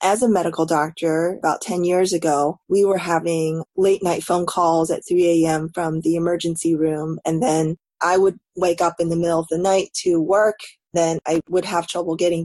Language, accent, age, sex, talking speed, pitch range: English, American, 20-39, female, 200 wpm, 160-185 Hz